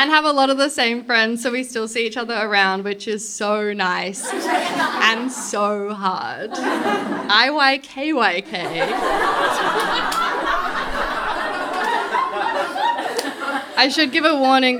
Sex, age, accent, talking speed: female, 20-39, Australian, 115 wpm